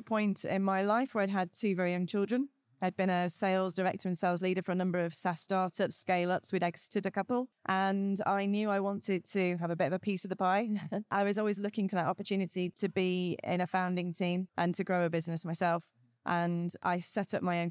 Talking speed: 235 wpm